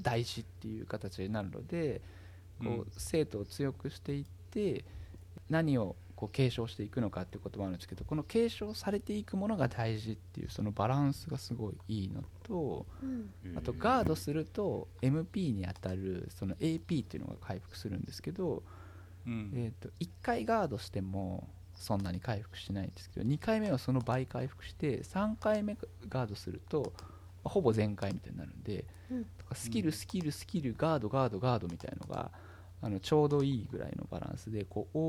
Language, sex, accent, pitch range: Japanese, male, native, 95-140 Hz